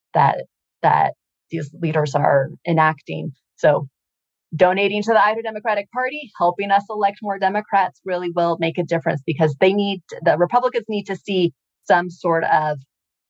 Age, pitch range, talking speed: 30-49, 160-200 Hz, 155 wpm